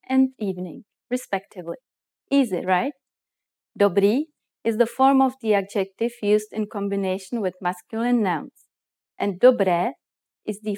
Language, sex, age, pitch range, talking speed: English, female, 30-49, 195-250 Hz, 120 wpm